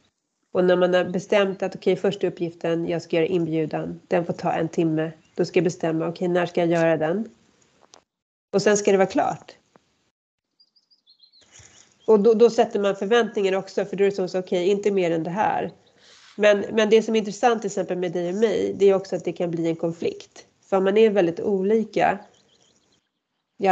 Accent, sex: native, female